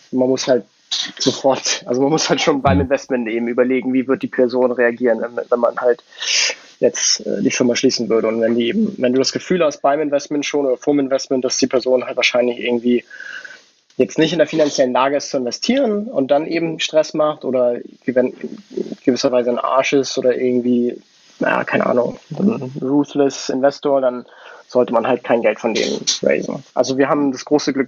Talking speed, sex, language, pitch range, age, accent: 195 wpm, male, English, 125-145 Hz, 20-39, German